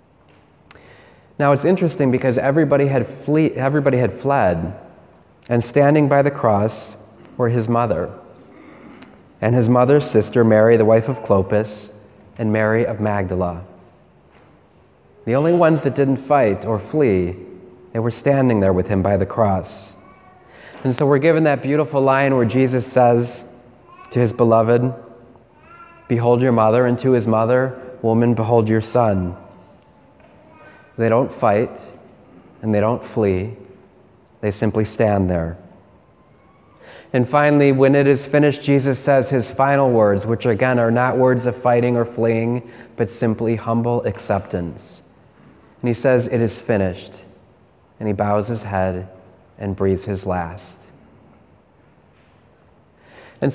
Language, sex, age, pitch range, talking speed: English, male, 30-49, 105-135 Hz, 140 wpm